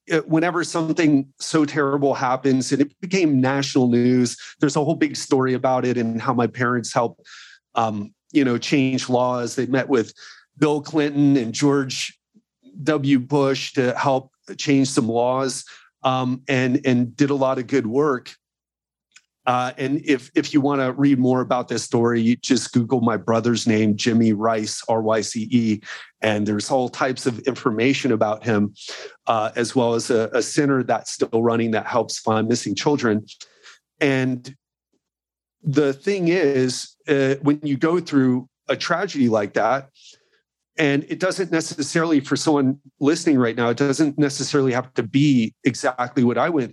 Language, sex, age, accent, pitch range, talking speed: English, male, 40-59, American, 120-145 Hz, 160 wpm